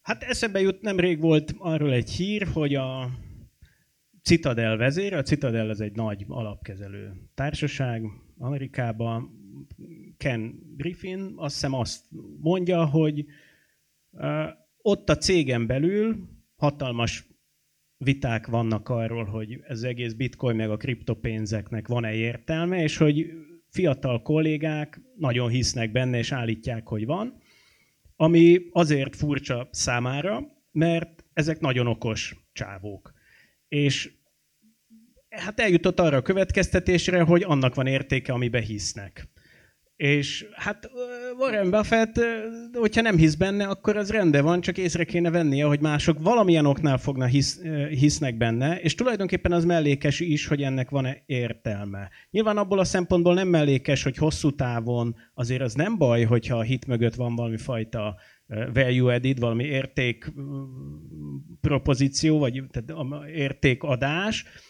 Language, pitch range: Hungarian, 120-170 Hz